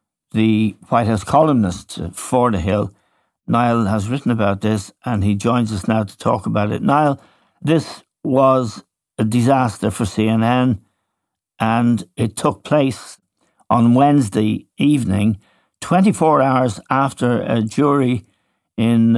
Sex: male